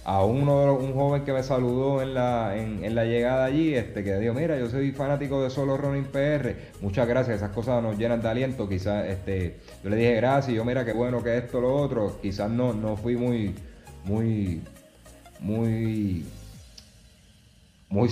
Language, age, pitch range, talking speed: Spanish, 30-49, 95-120 Hz, 185 wpm